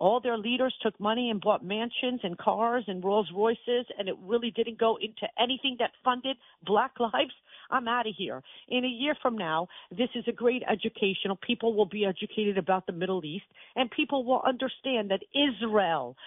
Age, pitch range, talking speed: 50-69, 200-260 Hz, 190 wpm